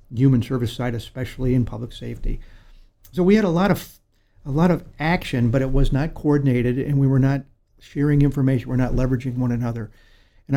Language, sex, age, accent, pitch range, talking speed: English, male, 50-69, American, 120-135 Hz, 195 wpm